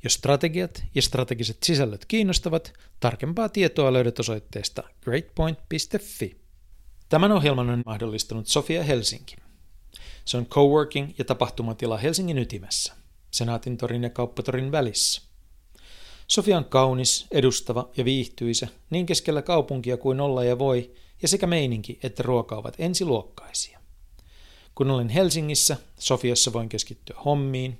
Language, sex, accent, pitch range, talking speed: Finnish, male, native, 110-145 Hz, 120 wpm